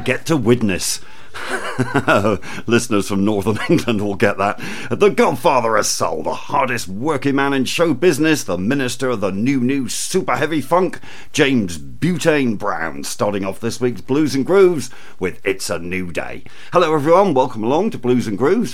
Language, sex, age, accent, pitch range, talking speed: English, male, 50-69, British, 105-150 Hz, 170 wpm